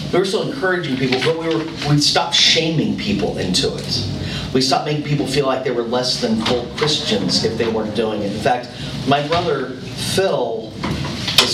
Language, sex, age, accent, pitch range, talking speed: English, male, 40-59, American, 110-130 Hz, 185 wpm